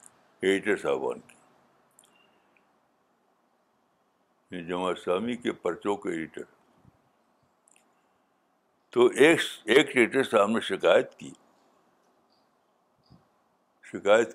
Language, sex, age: Urdu, male, 60-79